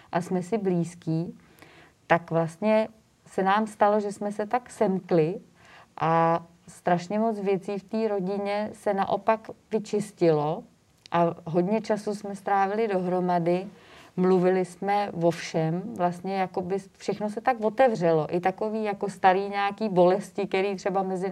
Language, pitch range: Czech, 180-210 Hz